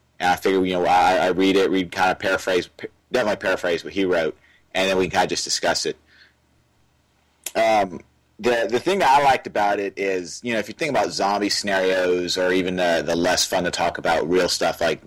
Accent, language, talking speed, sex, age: American, English, 225 wpm, male, 30-49